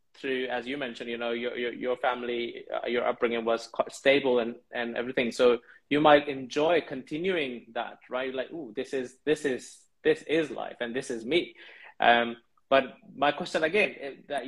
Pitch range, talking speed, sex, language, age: 120-145 Hz, 185 wpm, male, English, 20-39